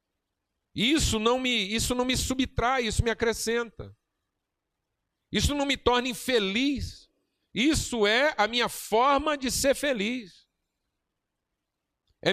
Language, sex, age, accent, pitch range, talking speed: Portuguese, male, 50-69, Brazilian, 215-285 Hz, 105 wpm